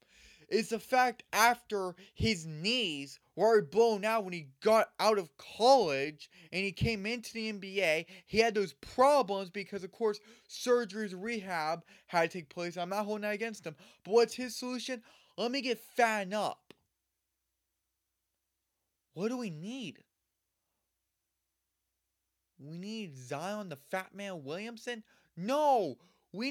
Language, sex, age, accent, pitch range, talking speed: English, male, 20-39, American, 165-225 Hz, 145 wpm